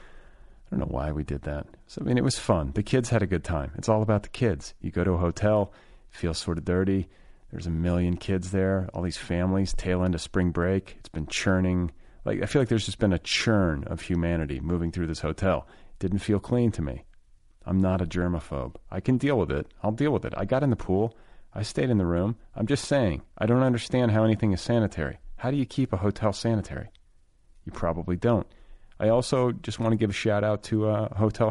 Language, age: English, 40-59